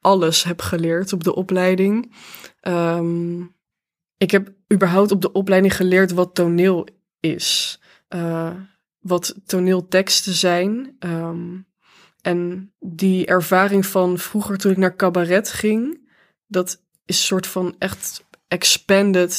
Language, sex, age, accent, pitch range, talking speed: English, female, 20-39, Dutch, 175-190 Hz, 120 wpm